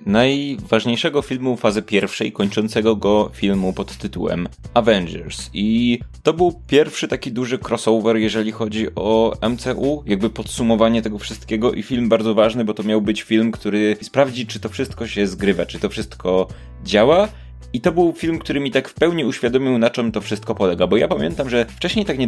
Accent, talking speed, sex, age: native, 180 wpm, male, 20-39